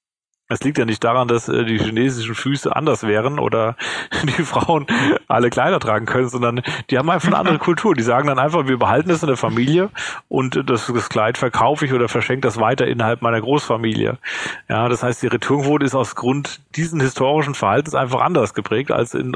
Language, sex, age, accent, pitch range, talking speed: German, male, 40-59, German, 115-145 Hz, 200 wpm